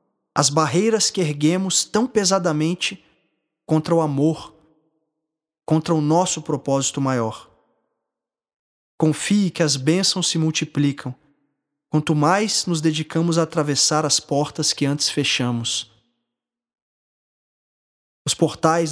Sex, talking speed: male, 105 wpm